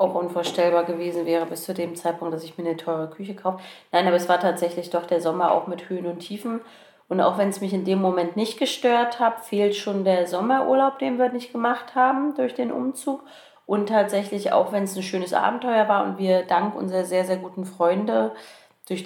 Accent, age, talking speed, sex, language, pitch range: German, 30-49, 215 wpm, female, German, 170-205 Hz